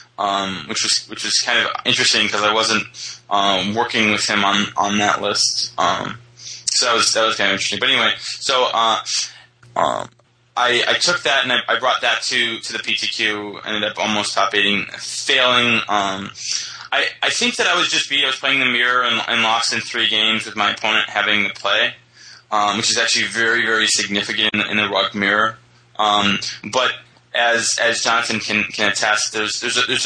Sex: male